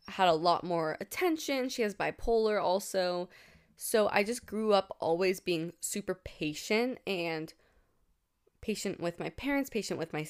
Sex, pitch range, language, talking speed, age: female, 170-230 Hz, English, 150 wpm, 20-39